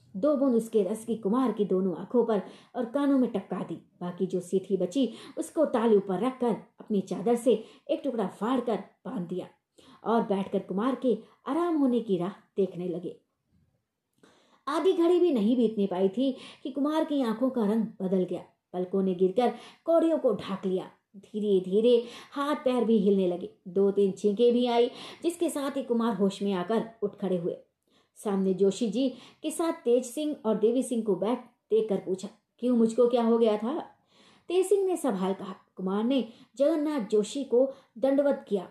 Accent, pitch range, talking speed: native, 195-255 Hz, 180 wpm